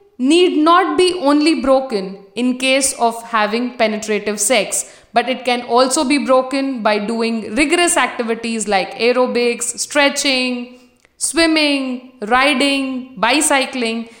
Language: Tamil